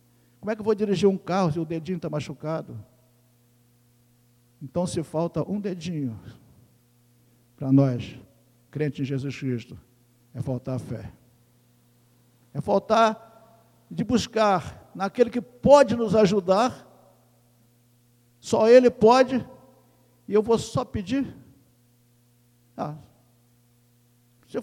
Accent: Brazilian